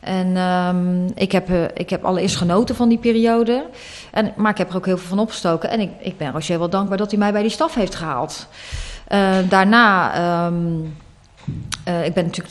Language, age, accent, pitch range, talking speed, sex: Dutch, 30-49, Dutch, 180-215 Hz, 210 wpm, female